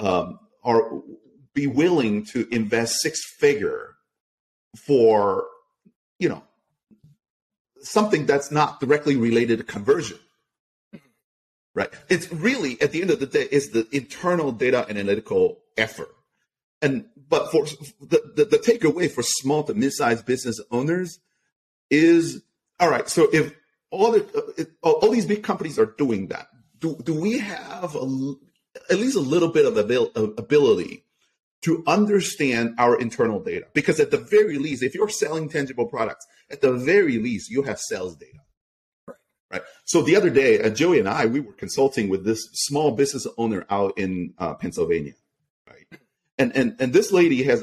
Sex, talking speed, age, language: male, 160 wpm, 40-59, English